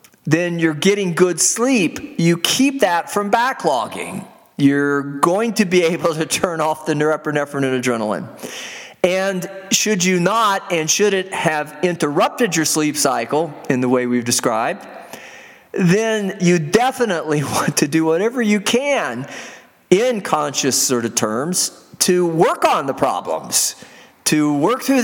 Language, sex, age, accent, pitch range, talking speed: English, male, 50-69, American, 135-190 Hz, 145 wpm